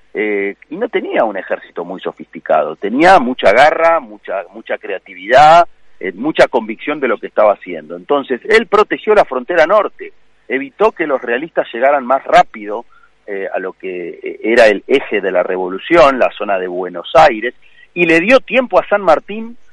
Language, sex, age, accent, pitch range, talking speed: Spanish, male, 40-59, Argentinian, 125-190 Hz, 175 wpm